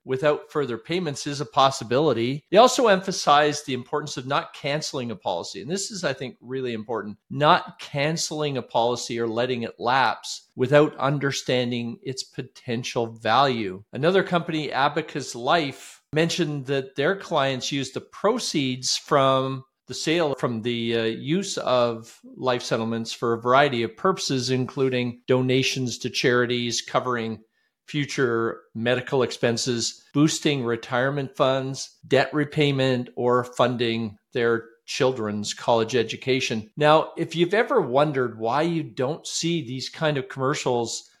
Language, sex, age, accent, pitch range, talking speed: English, male, 50-69, American, 115-145 Hz, 135 wpm